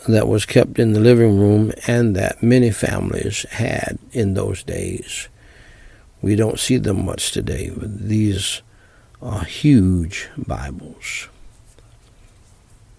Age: 60-79